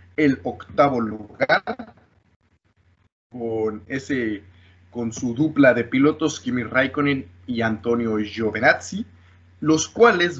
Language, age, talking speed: Spanish, 20-39, 100 wpm